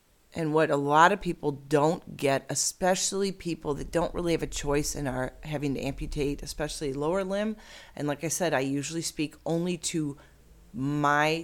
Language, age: English, 40-59